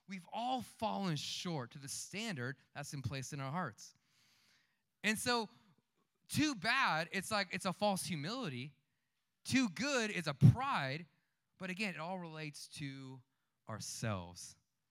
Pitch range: 135-195 Hz